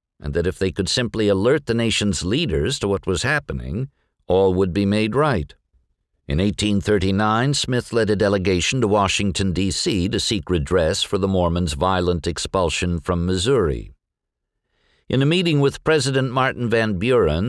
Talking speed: 160 wpm